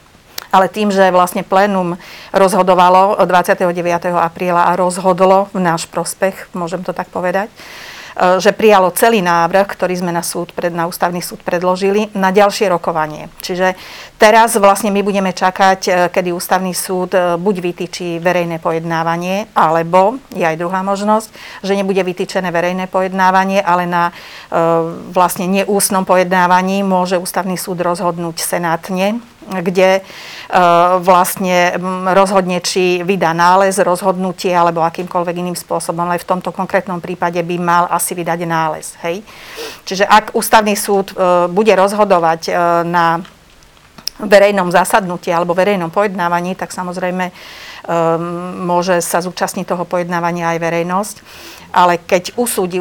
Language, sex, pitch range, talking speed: Slovak, female, 175-195 Hz, 130 wpm